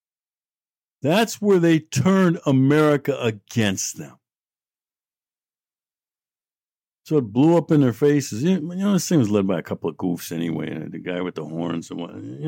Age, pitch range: 60-79, 105-175 Hz